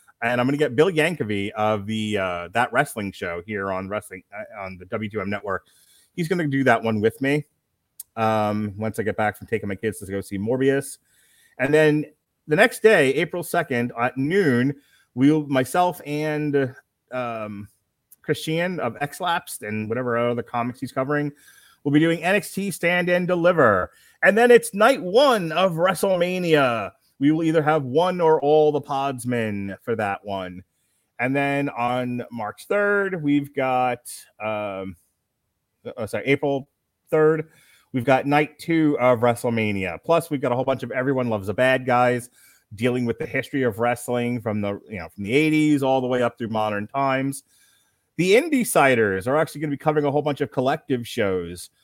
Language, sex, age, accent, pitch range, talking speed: English, male, 30-49, American, 110-150 Hz, 180 wpm